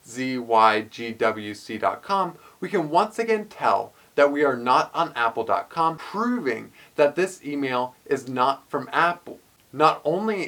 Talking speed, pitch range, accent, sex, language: 125 wpm, 120-165 Hz, American, male, English